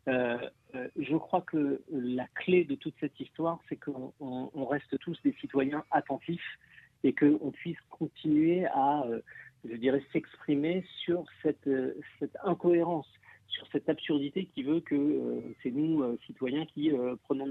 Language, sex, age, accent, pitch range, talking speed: French, male, 50-69, French, 130-160 Hz, 165 wpm